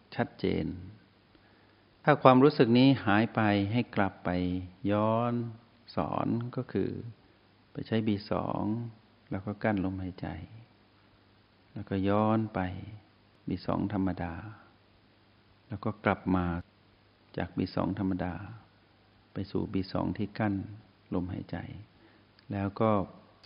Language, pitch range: Thai, 95-110 Hz